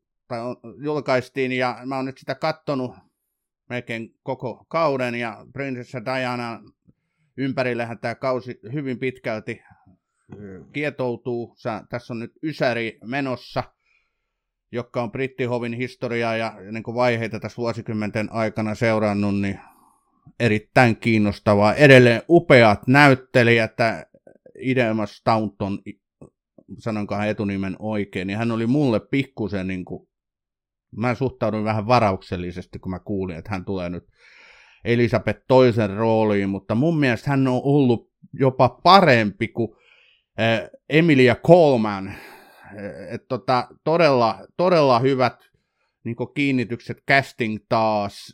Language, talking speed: Finnish, 110 wpm